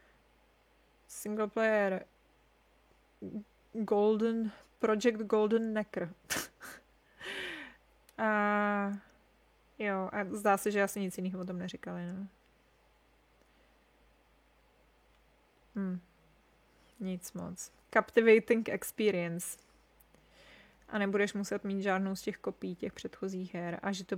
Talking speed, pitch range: 95 wpm, 195-235 Hz